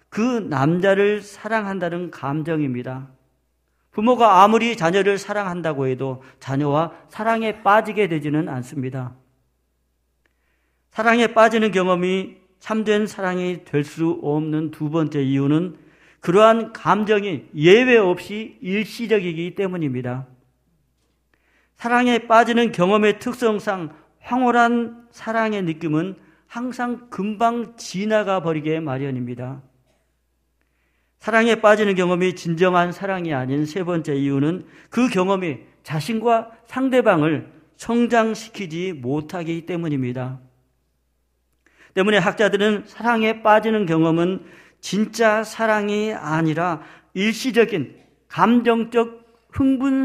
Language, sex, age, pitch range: Korean, male, 50-69, 145-215 Hz